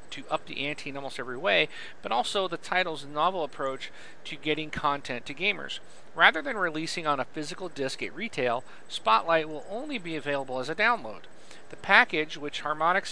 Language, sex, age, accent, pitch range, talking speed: English, male, 40-59, American, 140-185 Hz, 185 wpm